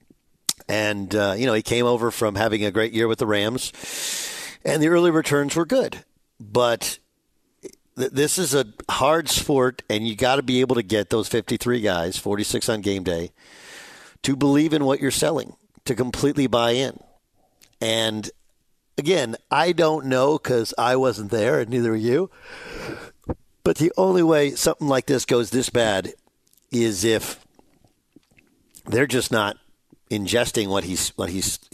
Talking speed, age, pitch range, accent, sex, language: 165 wpm, 50-69, 105-140 Hz, American, male, English